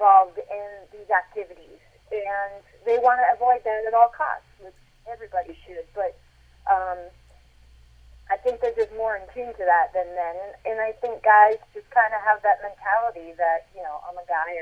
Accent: American